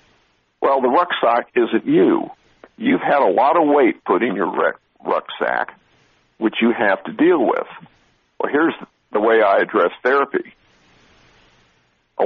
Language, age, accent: English, 60-79, American